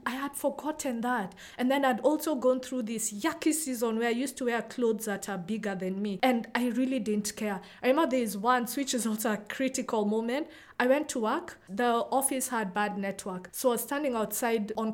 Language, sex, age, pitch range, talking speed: English, female, 20-39, 220-270 Hz, 215 wpm